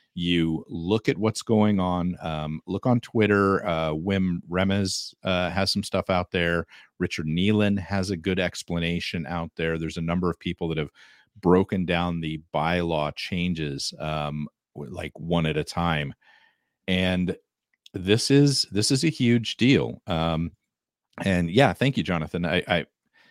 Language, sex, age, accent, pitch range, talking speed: English, male, 40-59, American, 85-100 Hz, 155 wpm